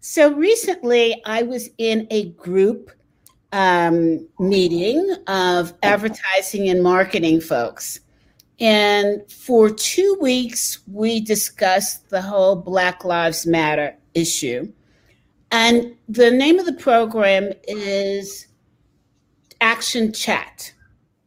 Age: 50-69